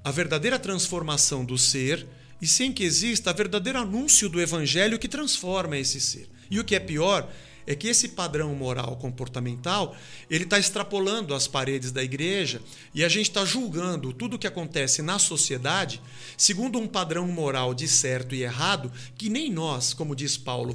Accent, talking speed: Brazilian, 175 wpm